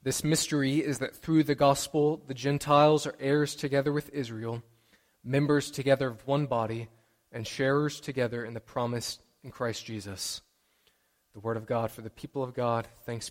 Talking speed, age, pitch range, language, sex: 170 wpm, 20-39, 120-155 Hz, English, male